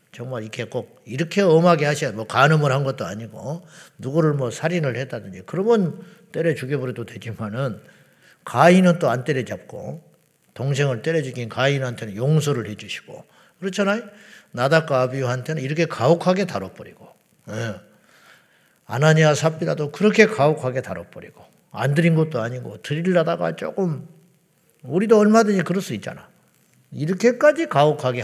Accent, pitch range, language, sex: Japanese, 130-170 Hz, Korean, male